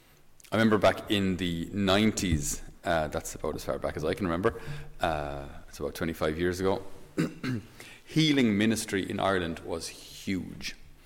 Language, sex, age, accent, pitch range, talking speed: English, male, 30-49, Irish, 85-110 Hz, 150 wpm